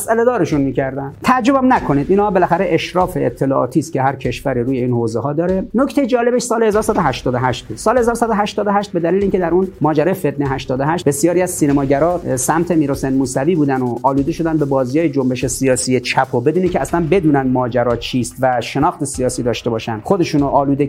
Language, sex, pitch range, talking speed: Persian, male, 130-180 Hz, 180 wpm